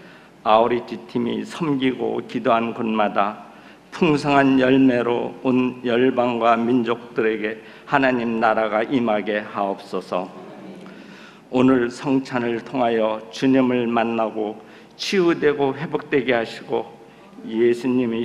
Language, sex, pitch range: Korean, male, 110-125 Hz